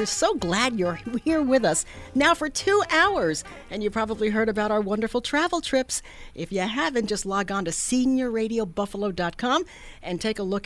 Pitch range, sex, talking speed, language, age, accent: 185-255 Hz, female, 175 wpm, English, 50-69, American